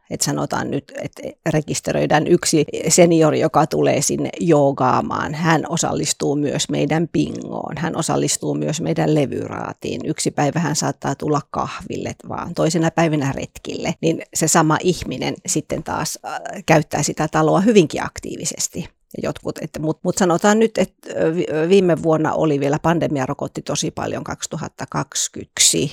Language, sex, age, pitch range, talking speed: Finnish, female, 40-59, 150-175 Hz, 130 wpm